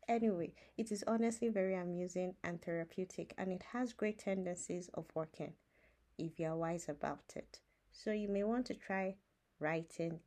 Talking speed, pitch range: 165 wpm, 185-260 Hz